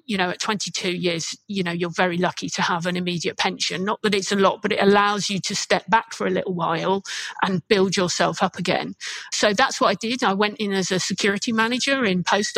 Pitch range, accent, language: 185-220 Hz, British, English